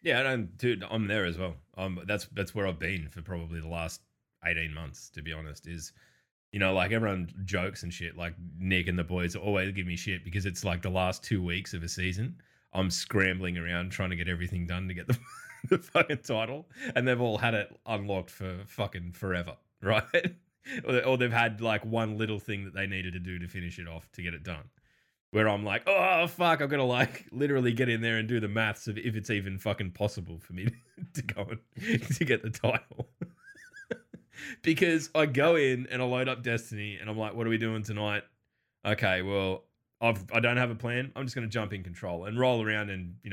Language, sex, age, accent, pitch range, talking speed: English, male, 20-39, Australian, 90-115 Hz, 225 wpm